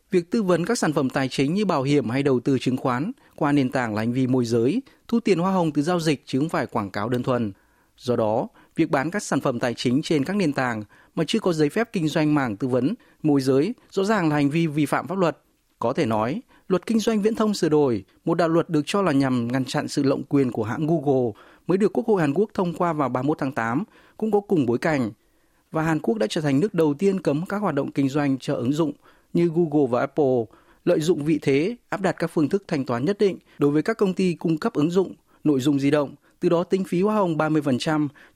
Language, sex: Vietnamese, male